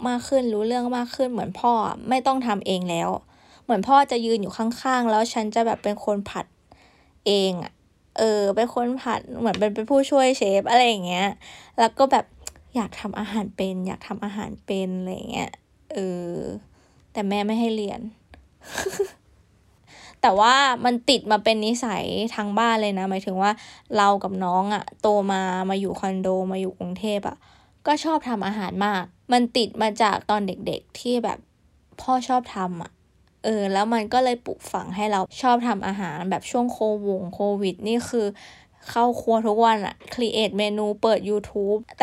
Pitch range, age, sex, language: 200-240 Hz, 20-39, female, Thai